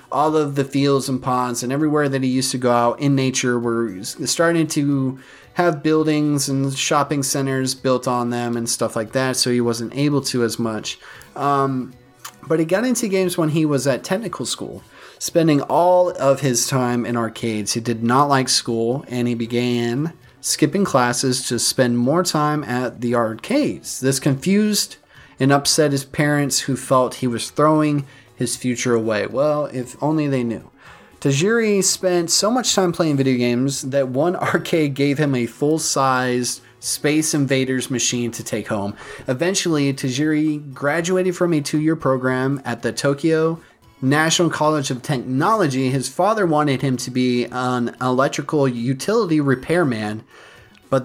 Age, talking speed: 30-49, 165 wpm